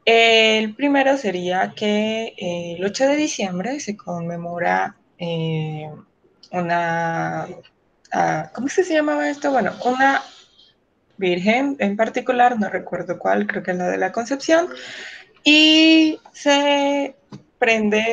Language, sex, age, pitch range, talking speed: Spanish, female, 20-39, 170-245 Hz, 115 wpm